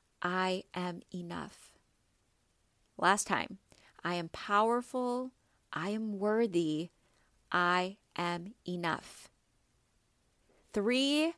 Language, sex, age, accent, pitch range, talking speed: English, female, 30-49, American, 180-215 Hz, 80 wpm